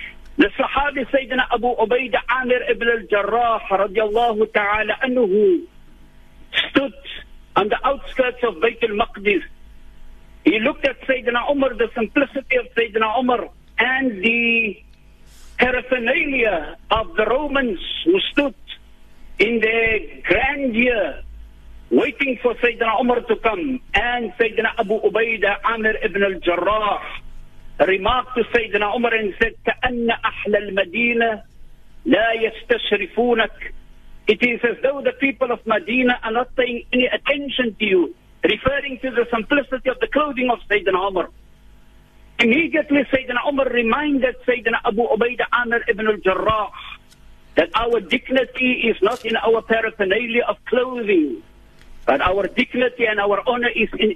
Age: 50-69